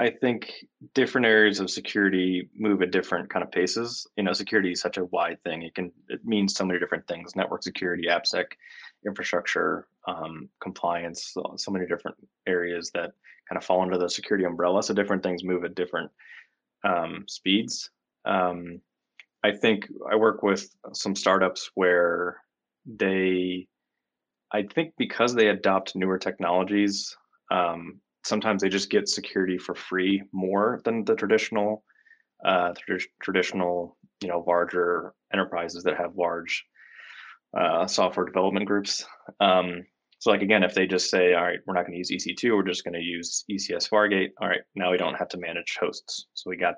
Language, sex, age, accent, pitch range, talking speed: English, male, 20-39, American, 90-100 Hz, 170 wpm